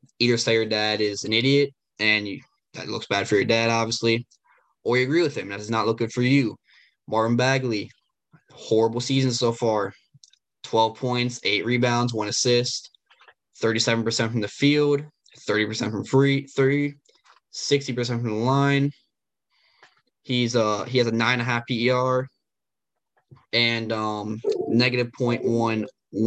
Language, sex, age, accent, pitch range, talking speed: English, male, 10-29, American, 110-135 Hz, 140 wpm